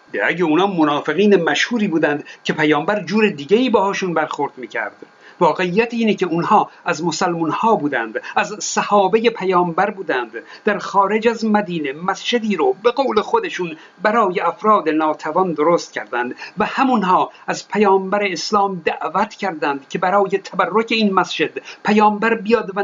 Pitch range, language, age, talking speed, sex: 170-220 Hz, Persian, 50-69, 135 wpm, male